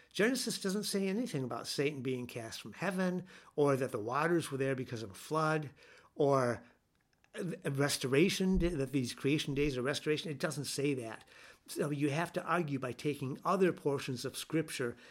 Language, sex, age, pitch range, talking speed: English, male, 60-79, 125-155 Hz, 170 wpm